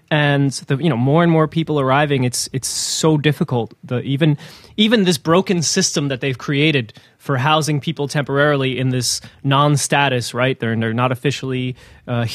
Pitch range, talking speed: 125-160 Hz, 180 wpm